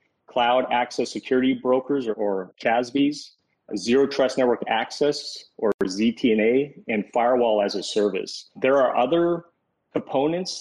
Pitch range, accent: 105-130 Hz, American